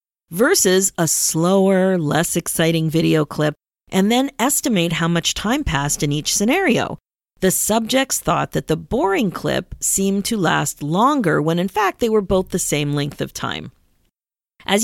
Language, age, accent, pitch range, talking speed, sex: English, 40-59, American, 165-220 Hz, 160 wpm, female